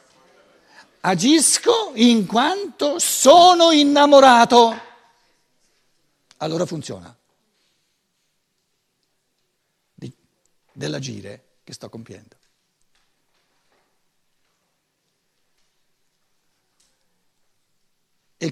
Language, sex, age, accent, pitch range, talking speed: Italian, male, 60-79, native, 140-210 Hz, 40 wpm